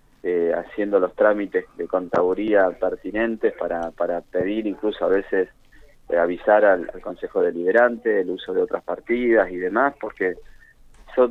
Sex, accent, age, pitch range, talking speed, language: male, Argentinian, 20-39, 95-135 Hz, 150 wpm, Spanish